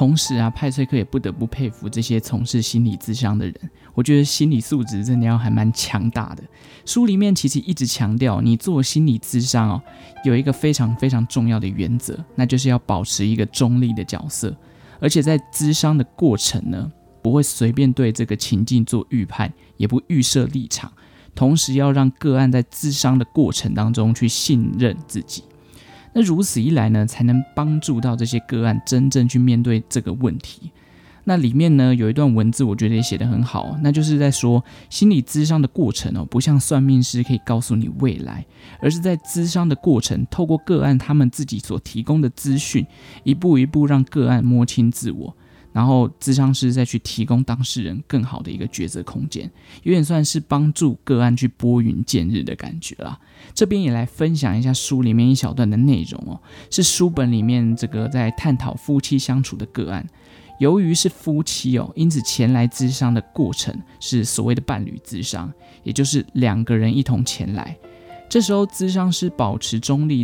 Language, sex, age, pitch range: Chinese, male, 20-39, 115-145 Hz